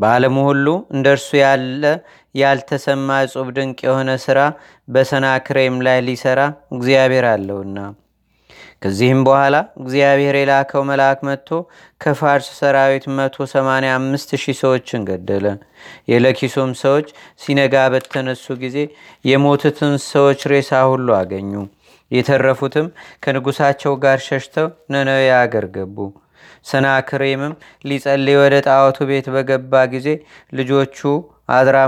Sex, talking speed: male, 95 wpm